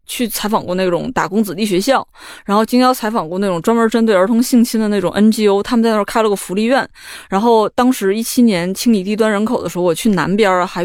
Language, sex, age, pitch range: Chinese, female, 20-39, 180-235 Hz